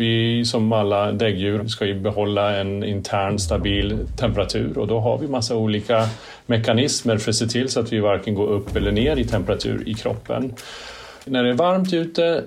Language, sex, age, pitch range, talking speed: Swedish, male, 40-59, 105-125 Hz, 190 wpm